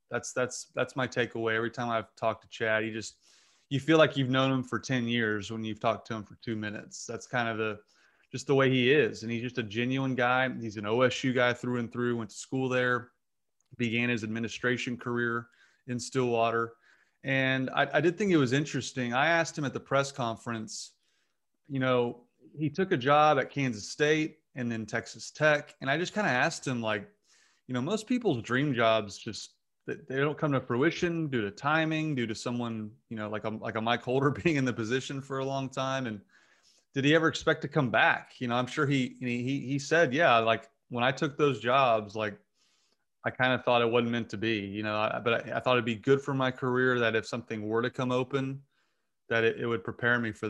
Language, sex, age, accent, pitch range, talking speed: English, male, 30-49, American, 115-135 Hz, 230 wpm